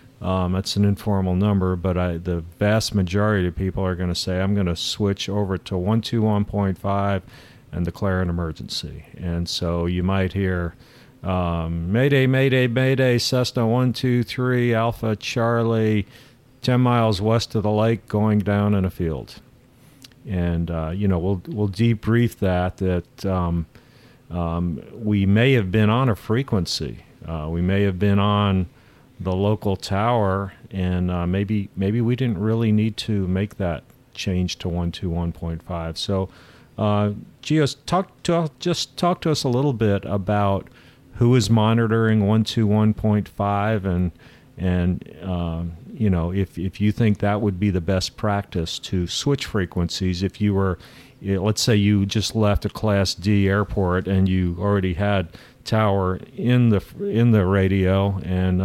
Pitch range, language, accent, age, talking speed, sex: 90-115 Hz, English, American, 50-69, 165 wpm, male